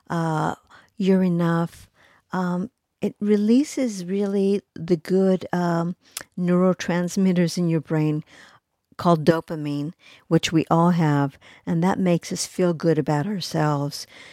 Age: 50-69